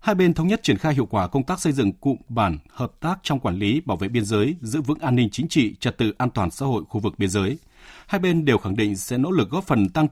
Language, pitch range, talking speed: Vietnamese, 105-145 Hz, 295 wpm